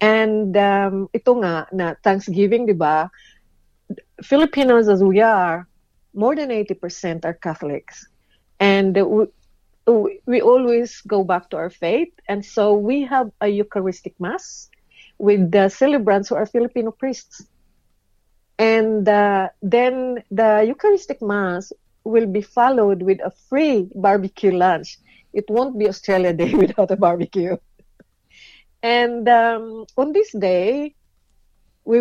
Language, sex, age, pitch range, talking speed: English, female, 40-59, 190-240 Hz, 125 wpm